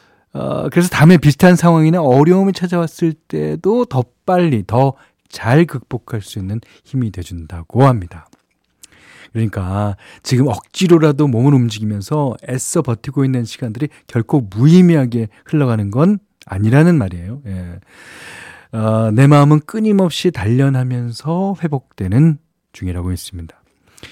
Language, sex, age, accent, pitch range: Korean, male, 40-59, native, 110-155 Hz